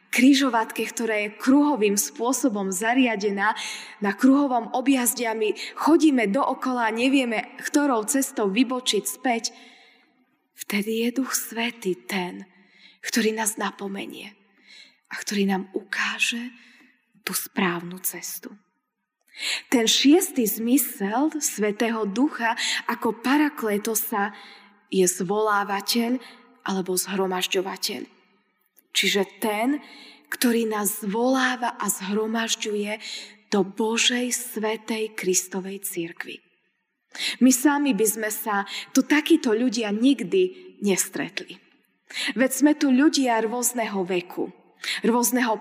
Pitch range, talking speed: 200-250 Hz, 95 wpm